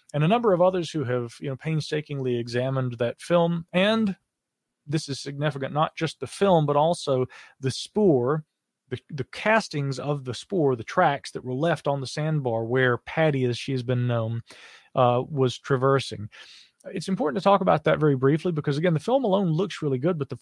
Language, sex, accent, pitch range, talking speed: English, male, American, 130-165 Hz, 195 wpm